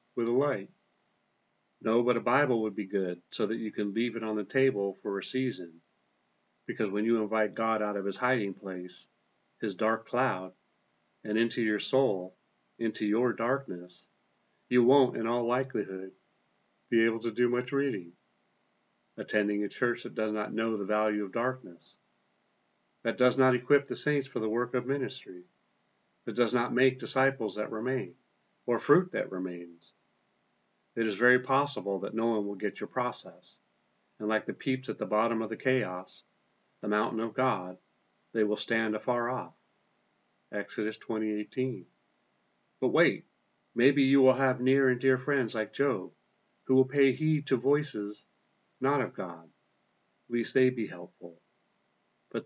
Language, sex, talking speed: English, male, 165 wpm